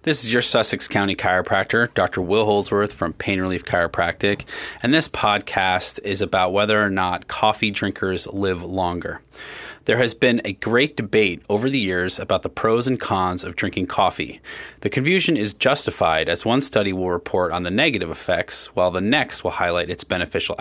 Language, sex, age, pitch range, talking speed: English, male, 20-39, 100-130 Hz, 180 wpm